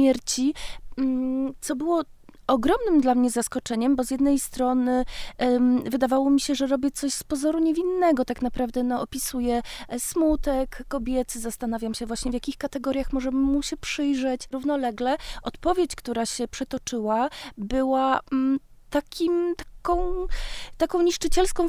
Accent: native